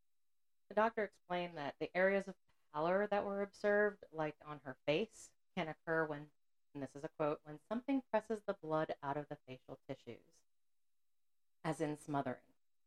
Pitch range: 135-160 Hz